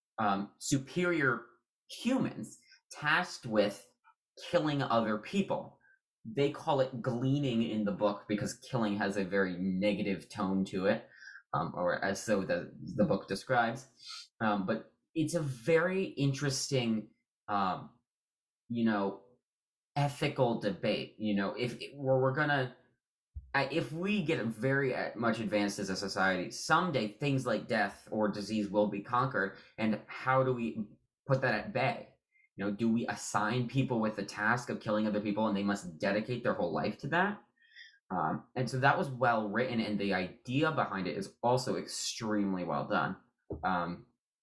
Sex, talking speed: male, 155 wpm